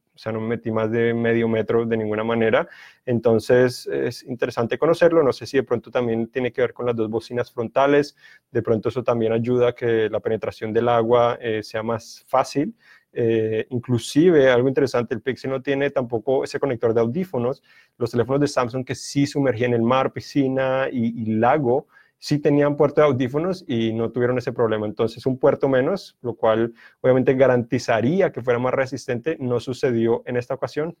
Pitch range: 115-130 Hz